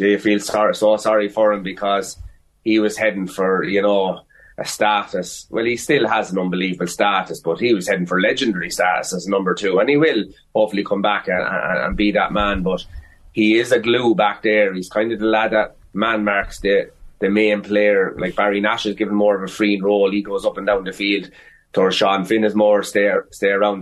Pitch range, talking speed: 95-110 Hz, 225 wpm